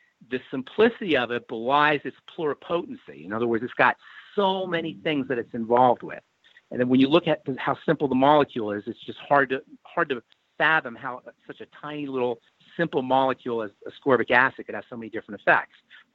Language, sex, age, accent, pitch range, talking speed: English, male, 50-69, American, 125-170 Hz, 200 wpm